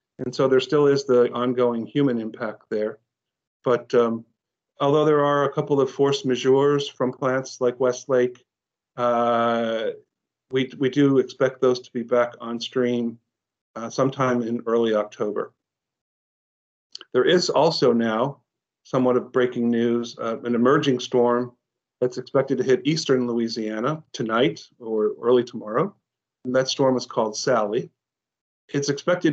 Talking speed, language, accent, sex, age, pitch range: 140 wpm, English, American, male, 50-69, 120-135 Hz